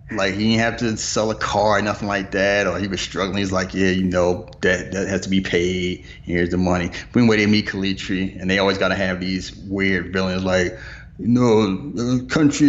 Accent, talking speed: American, 225 wpm